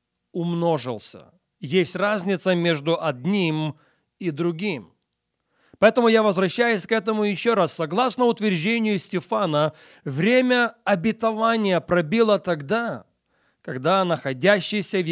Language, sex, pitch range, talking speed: English, male, 155-195 Hz, 95 wpm